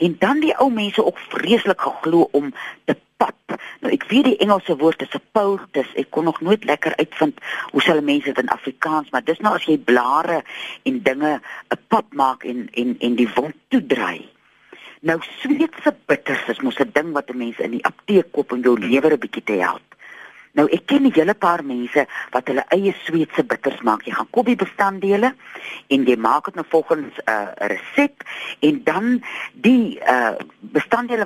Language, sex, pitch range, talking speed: Dutch, female, 145-220 Hz, 190 wpm